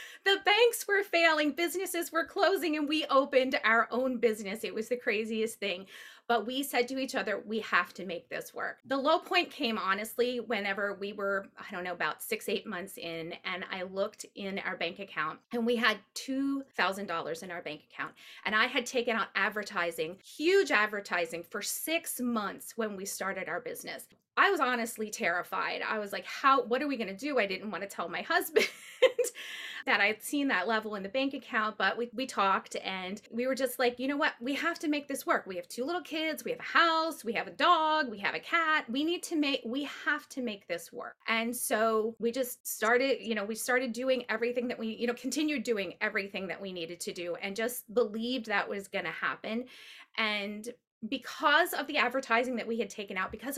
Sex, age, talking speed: female, 30-49, 215 wpm